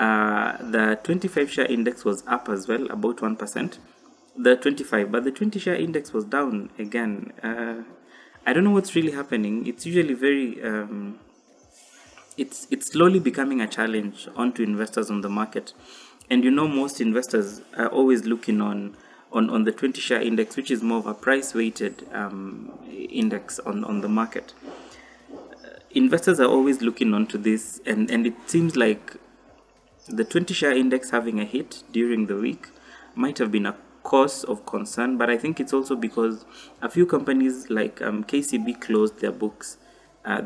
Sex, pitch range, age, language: male, 110-135 Hz, 20-39, English